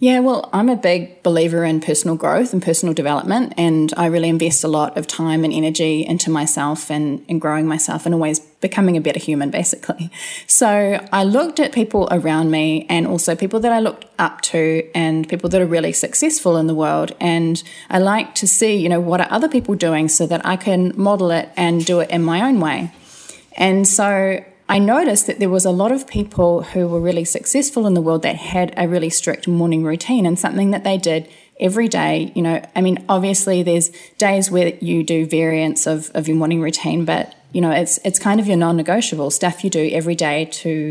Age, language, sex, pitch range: 20-39, English, female, 165-195 Hz